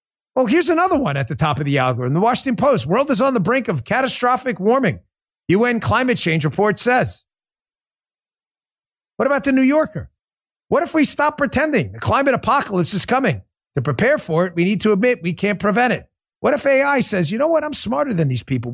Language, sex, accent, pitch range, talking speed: English, male, American, 150-235 Hz, 210 wpm